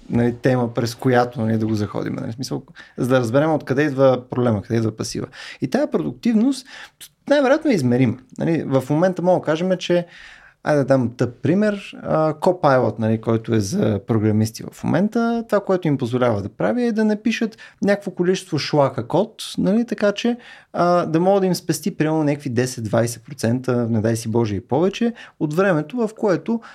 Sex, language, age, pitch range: male, Bulgarian, 30-49, 125-180 Hz